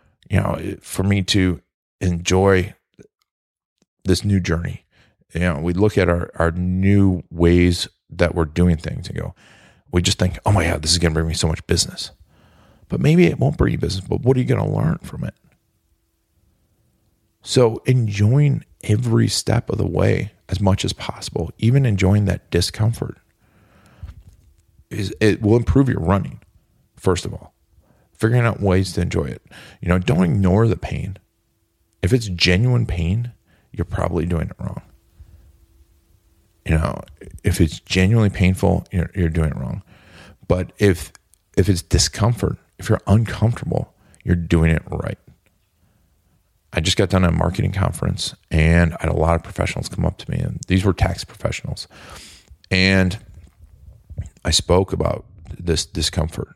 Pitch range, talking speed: 85-105 Hz, 160 wpm